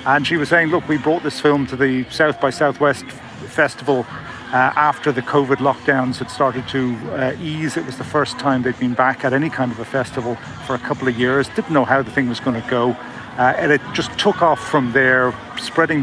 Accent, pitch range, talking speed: British, 125-145 Hz, 230 wpm